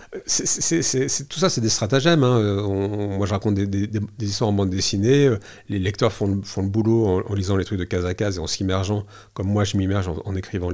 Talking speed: 270 wpm